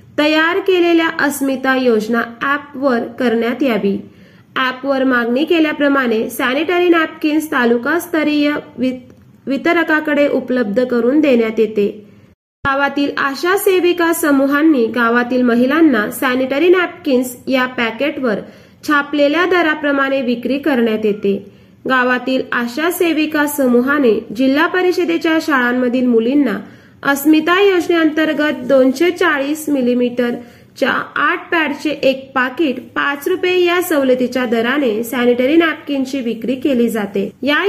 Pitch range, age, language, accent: 245-315 Hz, 30-49, Marathi, native